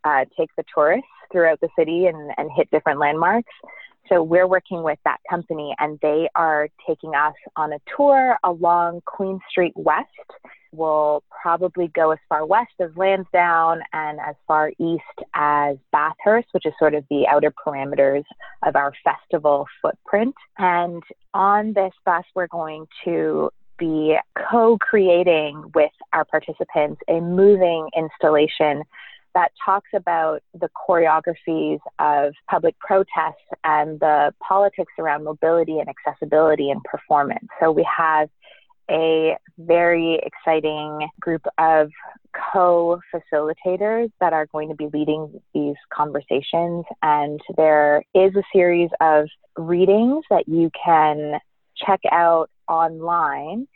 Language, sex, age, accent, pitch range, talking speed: English, female, 20-39, American, 155-180 Hz, 130 wpm